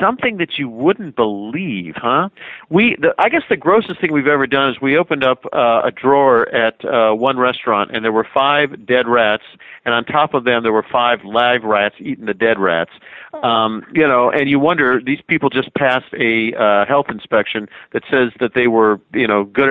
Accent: American